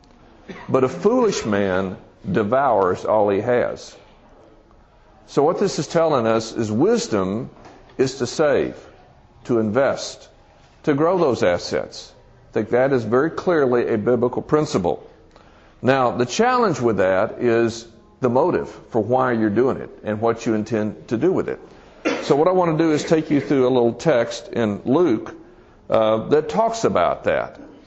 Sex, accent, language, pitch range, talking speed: male, American, English, 115-155 Hz, 160 wpm